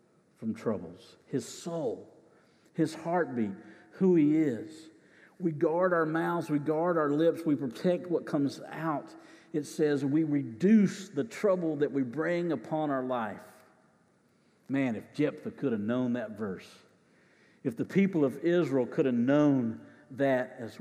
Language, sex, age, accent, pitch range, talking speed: English, male, 50-69, American, 115-150 Hz, 150 wpm